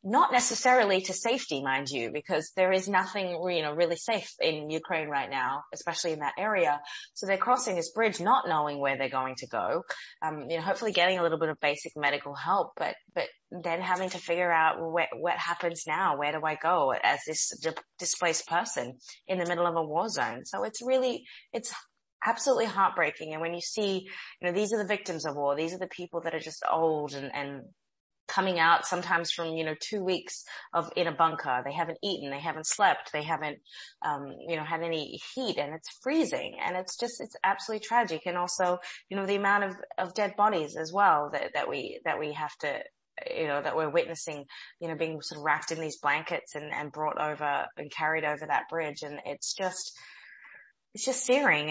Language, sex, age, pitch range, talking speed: English, female, 20-39, 155-190 Hz, 215 wpm